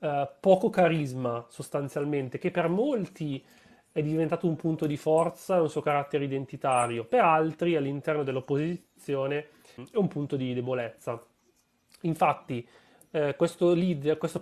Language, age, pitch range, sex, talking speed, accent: Italian, 30-49, 140-170 Hz, male, 130 wpm, native